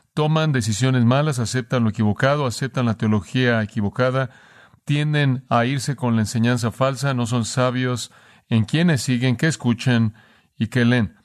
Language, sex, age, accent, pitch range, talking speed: Spanish, male, 40-59, Mexican, 110-135 Hz, 150 wpm